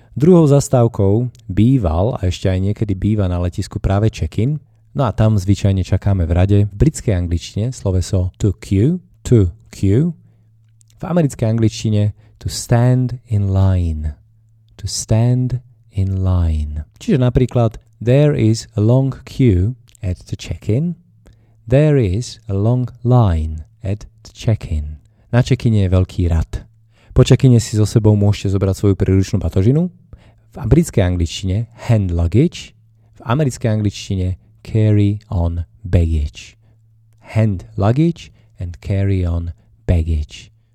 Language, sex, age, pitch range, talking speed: Slovak, male, 30-49, 95-120 Hz, 130 wpm